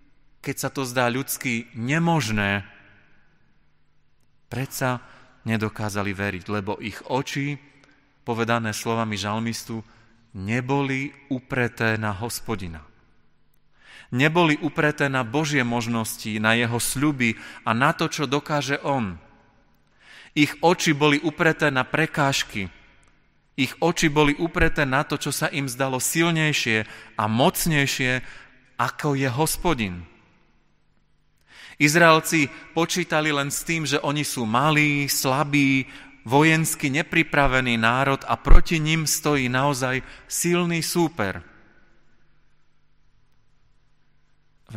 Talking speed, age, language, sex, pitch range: 100 wpm, 40-59, Slovak, male, 110-145 Hz